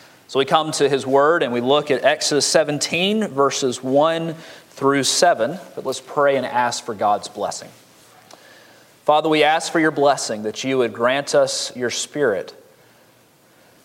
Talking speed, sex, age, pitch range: 160 wpm, male, 30-49, 125-160 Hz